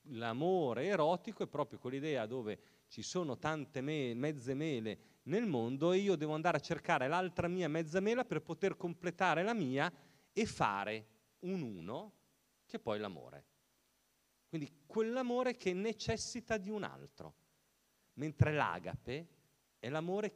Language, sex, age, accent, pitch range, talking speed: Italian, male, 40-59, native, 115-185 Hz, 140 wpm